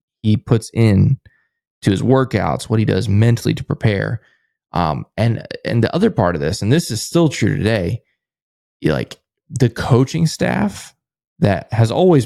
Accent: American